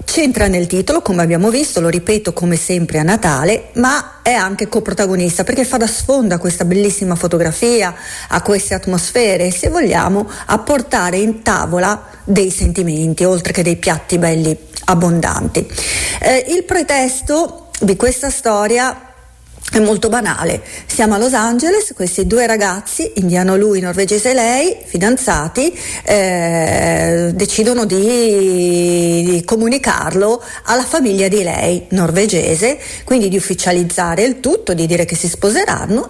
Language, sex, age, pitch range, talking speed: Italian, female, 40-59, 180-240 Hz, 135 wpm